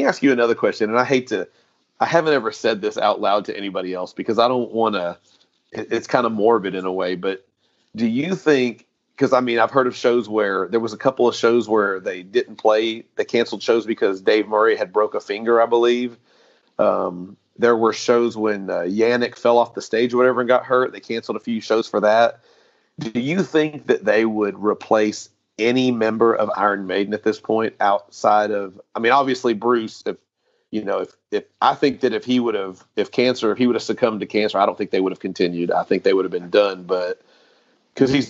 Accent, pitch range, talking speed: American, 105-130 Hz, 225 wpm